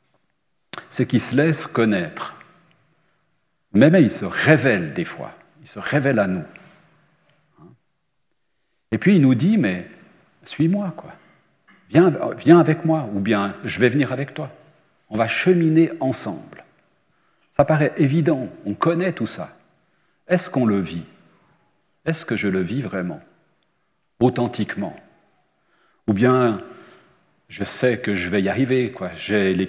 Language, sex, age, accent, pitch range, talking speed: French, male, 40-59, French, 100-150 Hz, 140 wpm